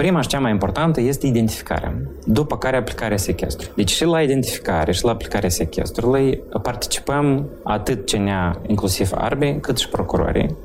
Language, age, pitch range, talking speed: Romanian, 30-49, 95-135 Hz, 150 wpm